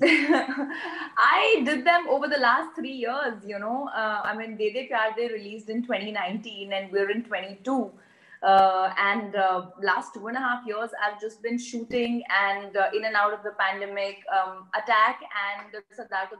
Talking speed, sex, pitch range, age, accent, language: 175 wpm, female, 200-240 Hz, 20-39, Indian, English